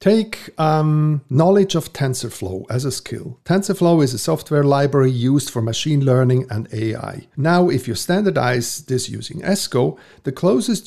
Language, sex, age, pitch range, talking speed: English, male, 50-69, 130-175 Hz, 155 wpm